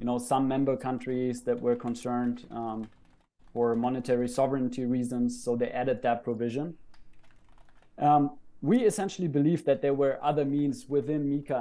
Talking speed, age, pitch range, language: 150 wpm, 30-49, 120-155 Hz, English